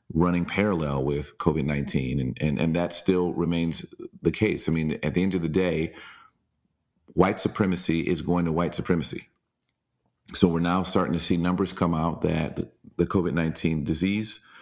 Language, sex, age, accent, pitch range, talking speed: English, male, 40-59, American, 80-95 Hz, 165 wpm